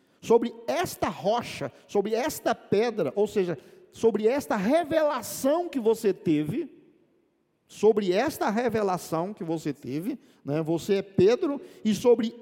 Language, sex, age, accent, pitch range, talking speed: Portuguese, male, 50-69, Brazilian, 175-250 Hz, 125 wpm